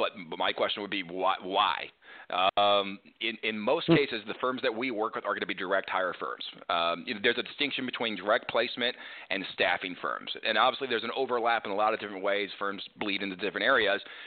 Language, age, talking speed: English, 40-59, 210 wpm